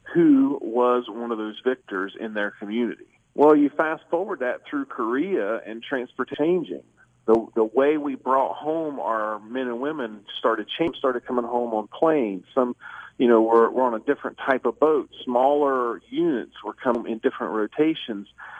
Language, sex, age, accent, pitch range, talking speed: English, male, 40-59, American, 115-145 Hz, 175 wpm